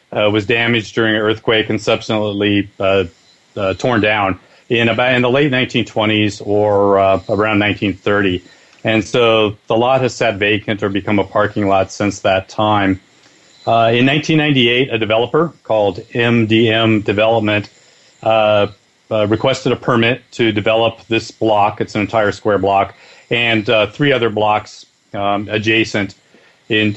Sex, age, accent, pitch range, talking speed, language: male, 40-59, American, 105-120 Hz, 150 wpm, English